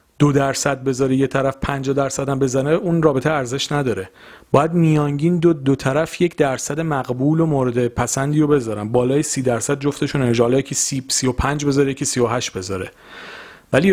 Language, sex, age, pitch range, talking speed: Persian, male, 40-59, 115-160 Hz, 170 wpm